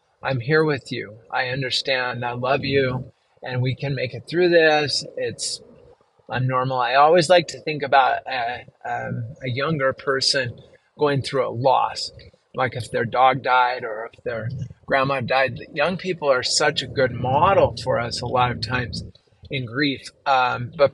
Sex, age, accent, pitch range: male, 30-49, American, 125-145 Hz